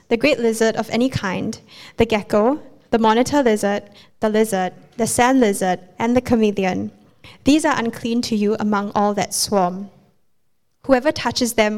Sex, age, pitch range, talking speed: female, 10-29, 210-245 Hz, 160 wpm